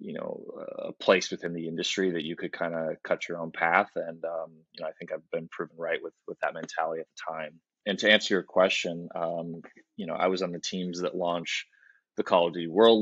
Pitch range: 80-90 Hz